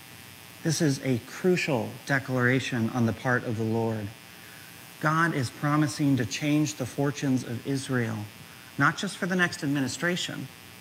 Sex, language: male, English